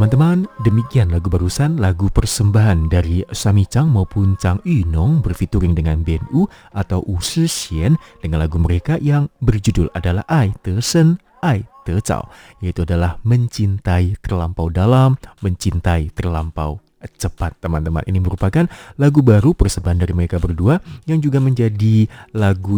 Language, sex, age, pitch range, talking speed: Malay, male, 30-49, 90-125 Hz, 135 wpm